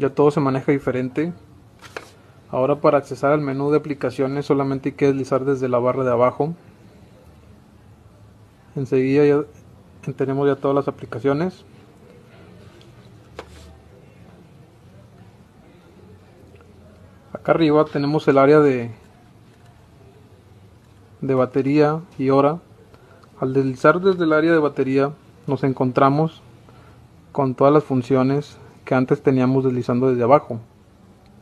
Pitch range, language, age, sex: 115-145 Hz, Chinese, 30-49, male